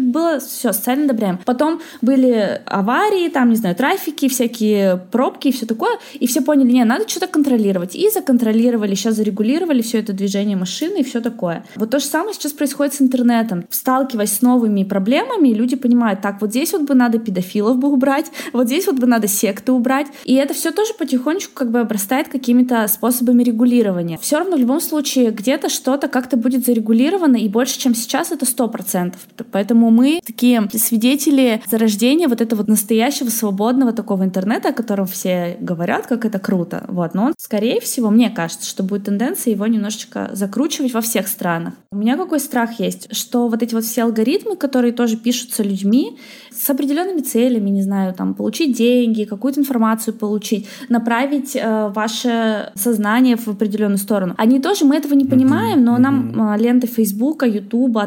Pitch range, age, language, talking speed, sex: 215-270 Hz, 20-39, Russian, 175 wpm, female